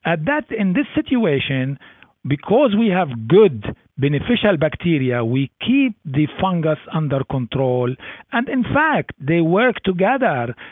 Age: 50-69